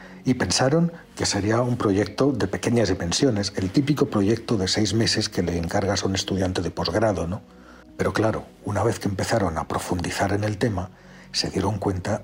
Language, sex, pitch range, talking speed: Spanish, male, 95-115 Hz, 185 wpm